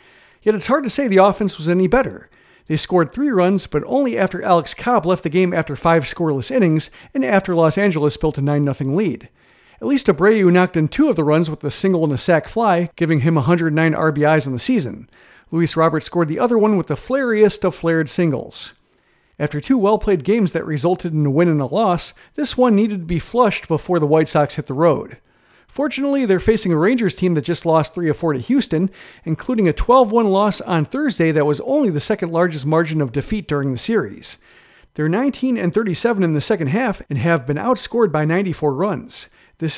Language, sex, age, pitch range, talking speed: English, male, 40-59, 155-215 Hz, 205 wpm